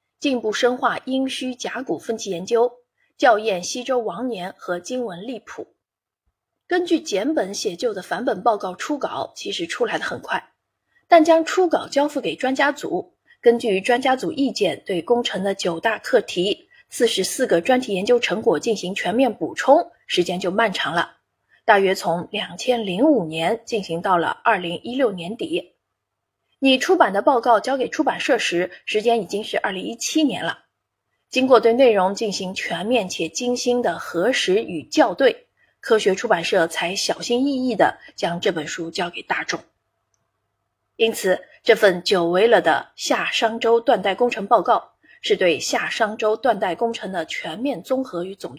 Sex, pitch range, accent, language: female, 190-265 Hz, native, Chinese